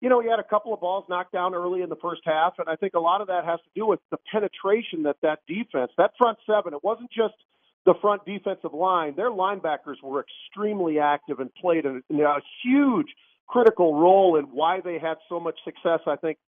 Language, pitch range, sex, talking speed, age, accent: English, 160-205 Hz, male, 225 wpm, 40-59, American